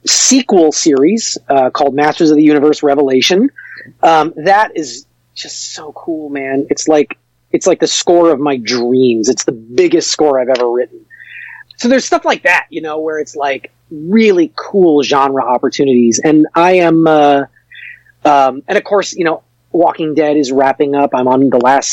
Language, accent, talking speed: English, American, 180 wpm